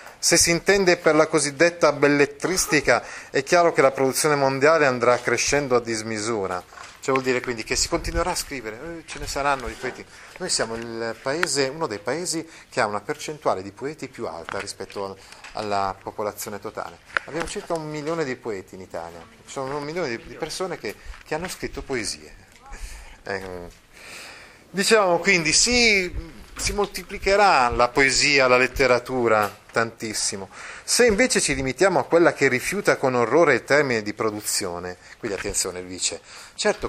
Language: Italian